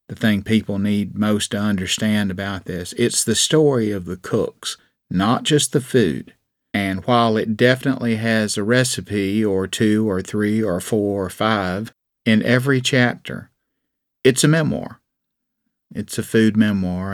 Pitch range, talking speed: 100-120 Hz, 155 wpm